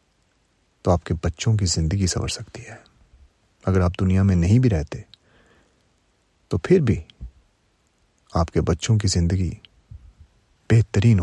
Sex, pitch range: male, 90-115 Hz